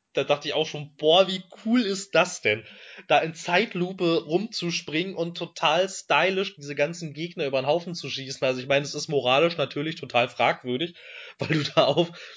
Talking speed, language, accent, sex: 190 wpm, German, German, male